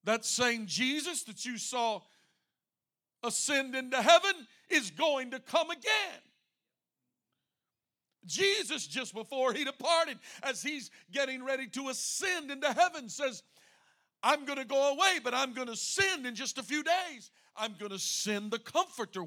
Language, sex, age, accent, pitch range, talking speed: English, male, 50-69, American, 210-275 Hz, 155 wpm